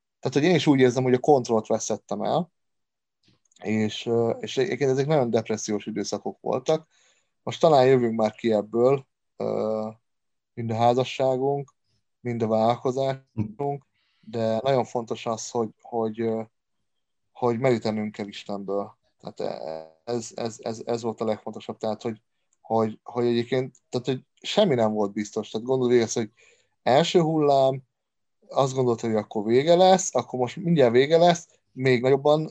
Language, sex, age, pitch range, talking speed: Hungarian, male, 30-49, 115-140 Hz, 145 wpm